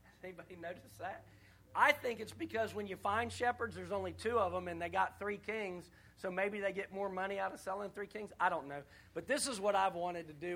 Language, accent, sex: English, American, male